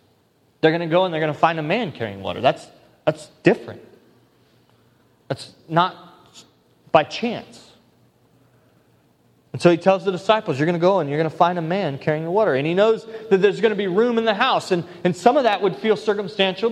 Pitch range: 145-195 Hz